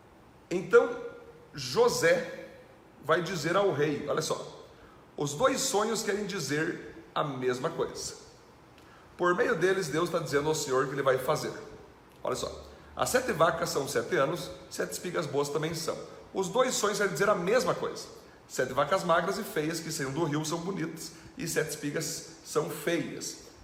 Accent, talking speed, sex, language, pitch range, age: Brazilian, 170 wpm, male, Portuguese, 155-250 Hz, 40-59